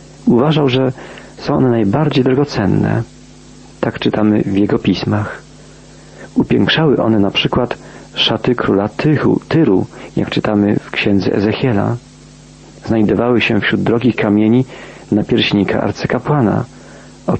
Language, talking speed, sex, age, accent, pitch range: Polish, 115 wpm, male, 40-59, native, 100-125 Hz